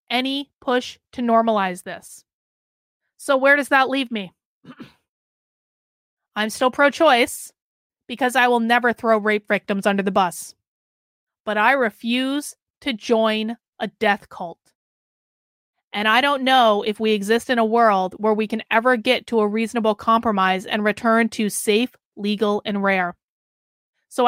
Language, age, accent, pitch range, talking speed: English, 20-39, American, 210-255 Hz, 145 wpm